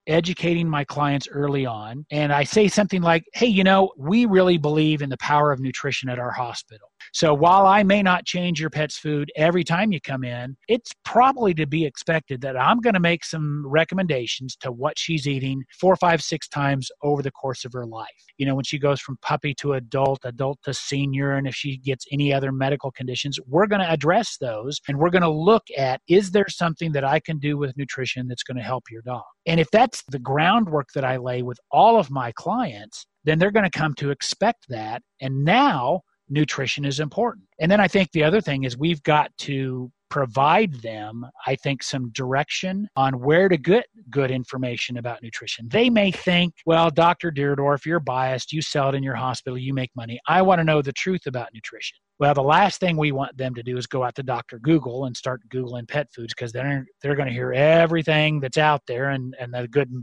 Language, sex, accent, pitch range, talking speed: English, male, American, 130-170 Hz, 220 wpm